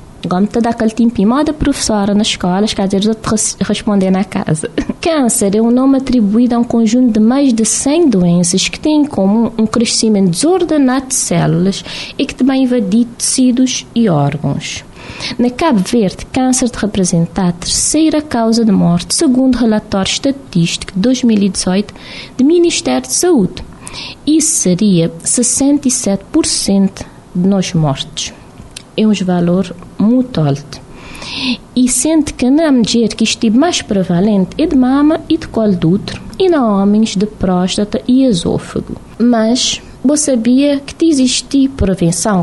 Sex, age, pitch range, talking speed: female, 20-39, 200-270 Hz, 140 wpm